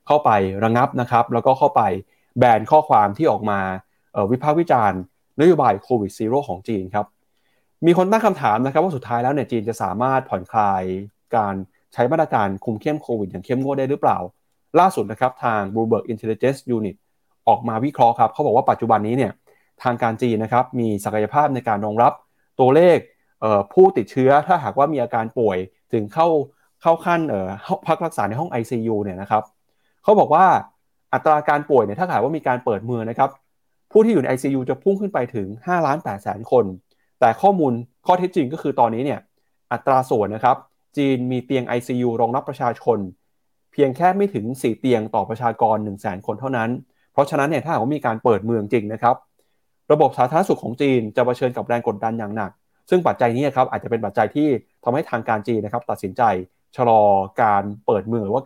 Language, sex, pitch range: Thai, male, 110-140 Hz